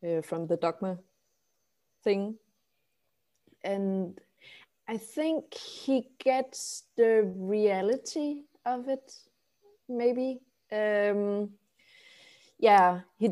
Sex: female